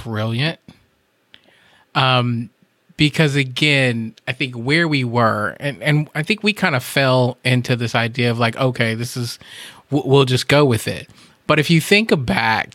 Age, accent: 20-39, American